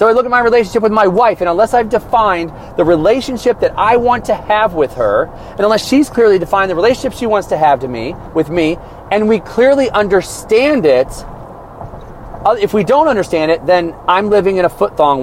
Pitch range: 120-165 Hz